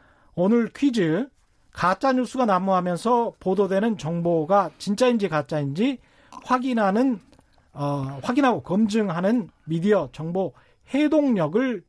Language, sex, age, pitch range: Korean, male, 40-59, 165-245 Hz